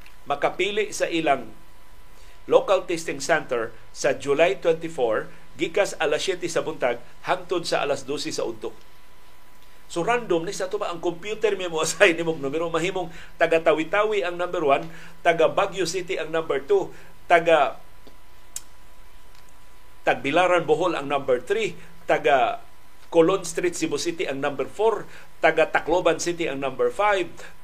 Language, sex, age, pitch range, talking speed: Filipino, male, 50-69, 145-205 Hz, 135 wpm